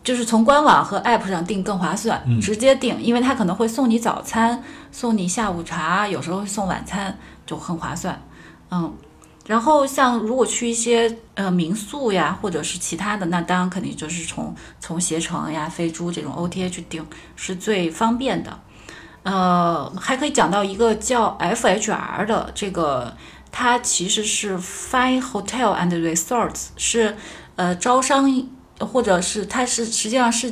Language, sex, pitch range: Chinese, female, 175-235 Hz